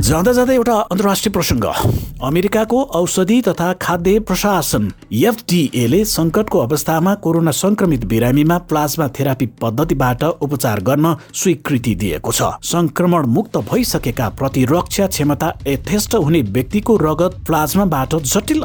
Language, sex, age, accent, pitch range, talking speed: English, male, 60-79, Indian, 130-185 Hz, 115 wpm